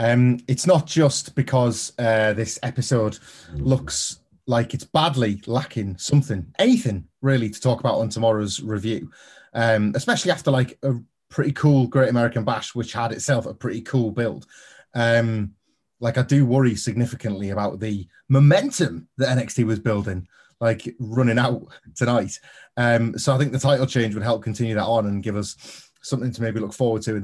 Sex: male